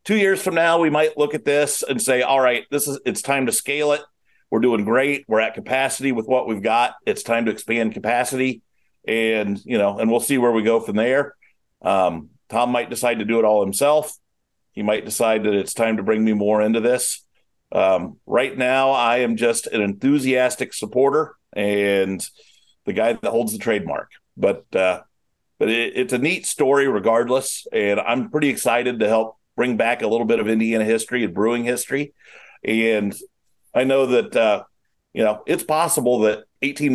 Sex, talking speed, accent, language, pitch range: male, 195 wpm, American, English, 110-135 Hz